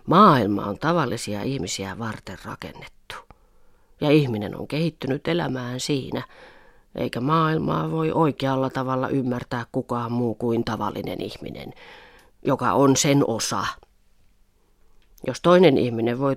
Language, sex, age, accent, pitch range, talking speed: Finnish, female, 30-49, native, 110-140 Hz, 115 wpm